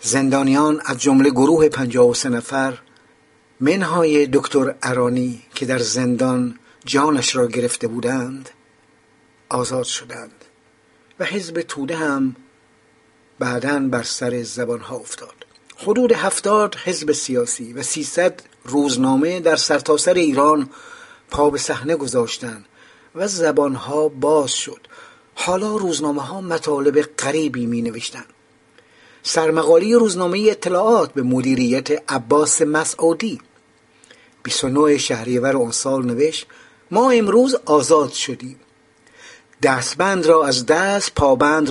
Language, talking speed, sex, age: English, 110 wpm, male, 50-69